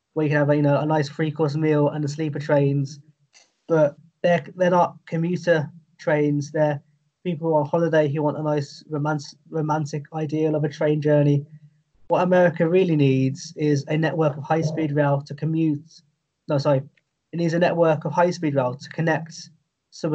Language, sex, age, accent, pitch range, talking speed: English, male, 20-39, British, 145-160 Hz, 180 wpm